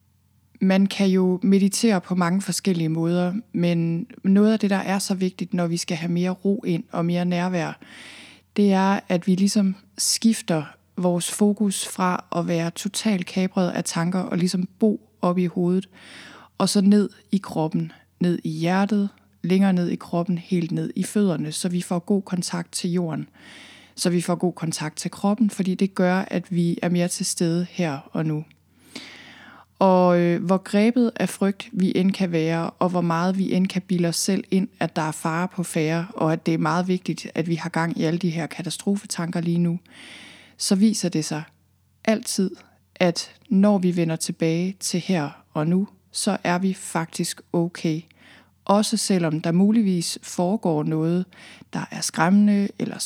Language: Danish